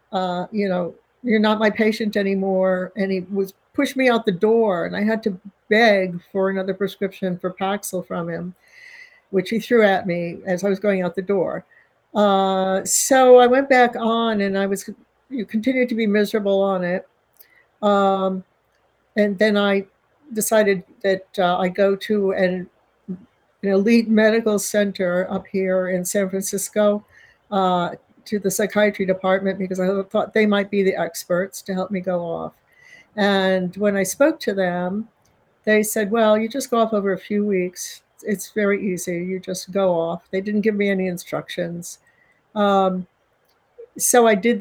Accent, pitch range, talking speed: American, 185-215 Hz, 170 wpm